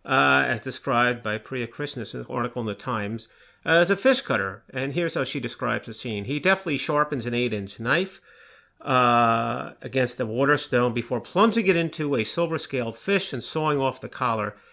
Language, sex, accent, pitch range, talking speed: English, male, American, 115-150 Hz, 185 wpm